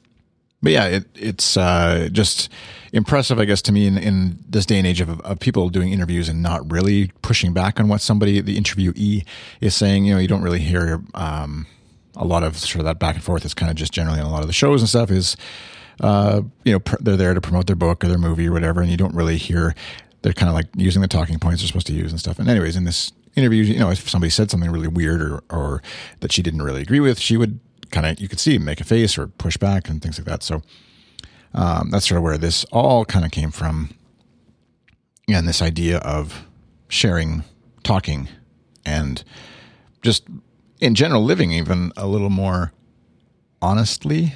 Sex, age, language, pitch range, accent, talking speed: male, 40-59, English, 85-105 Hz, American, 220 wpm